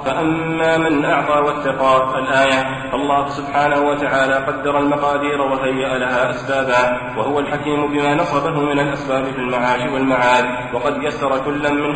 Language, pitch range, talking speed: Arabic, 130-145 Hz, 130 wpm